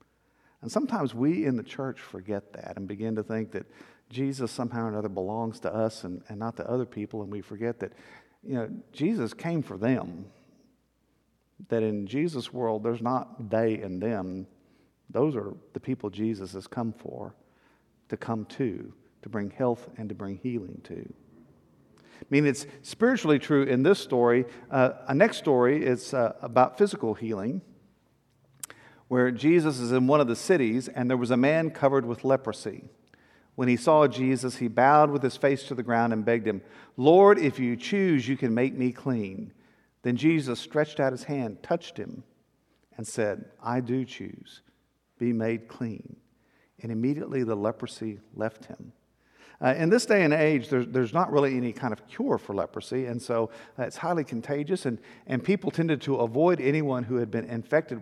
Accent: American